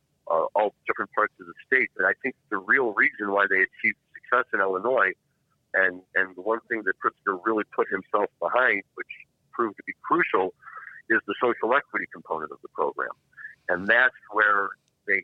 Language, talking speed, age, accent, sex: English, 185 wpm, 50-69, American, male